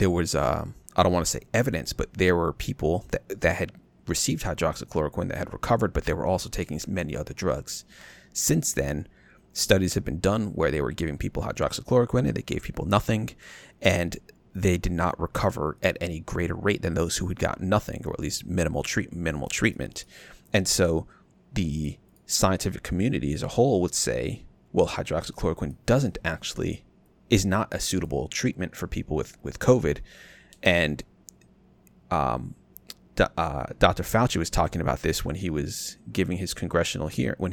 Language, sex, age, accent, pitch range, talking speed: English, male, 30-49, American, 80-95 Hz, 175 wpm